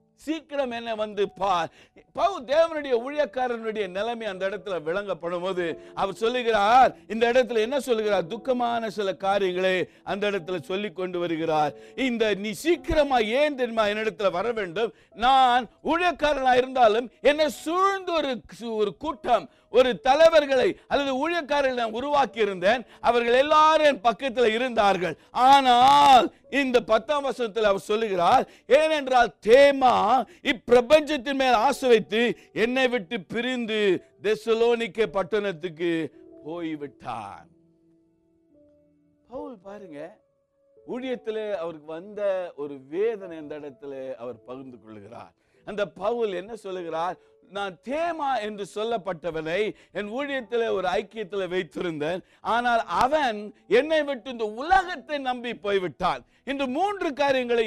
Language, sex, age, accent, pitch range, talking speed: Tamil, male, 60-79, native, 185-265 Hz, 95 wpm